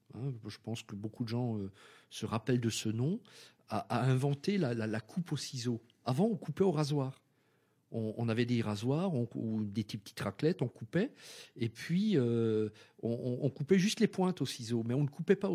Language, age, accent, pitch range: French, 50-69, French, 120-175 Hz